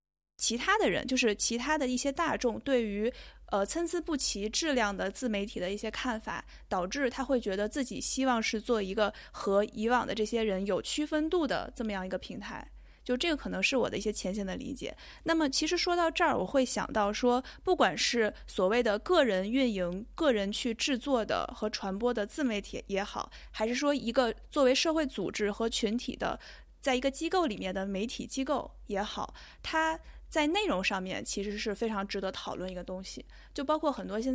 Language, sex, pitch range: Chinese, female, 205-270 Hz